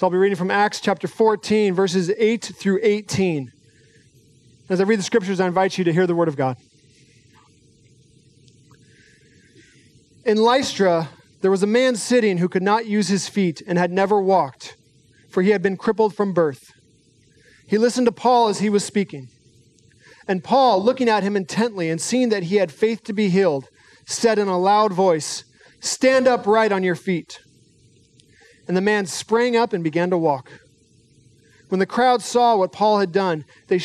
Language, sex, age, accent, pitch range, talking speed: English, male, 40-59, American, 145-215 Hz, 180 wpm